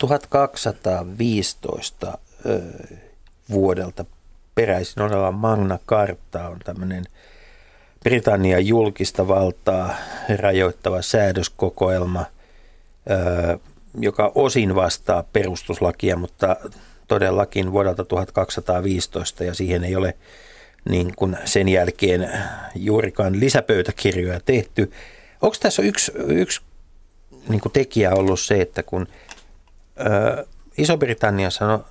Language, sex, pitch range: Finnish, male, 90-110 Hz